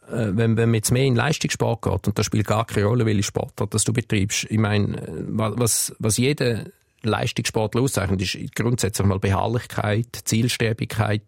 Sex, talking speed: male, 175 wpm